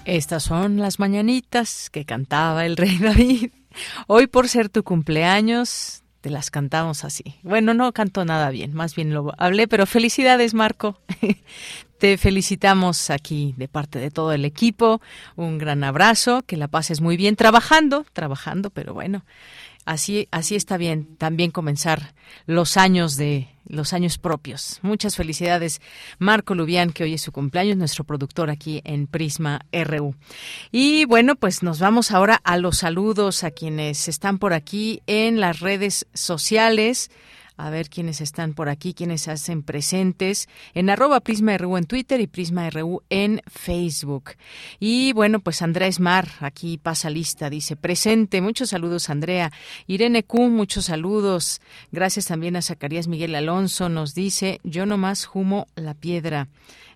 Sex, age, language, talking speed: female, 40-59, Spanish, 150 wpm